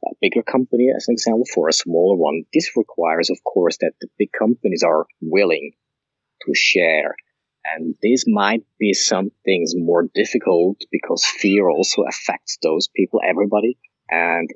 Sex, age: male, 30-49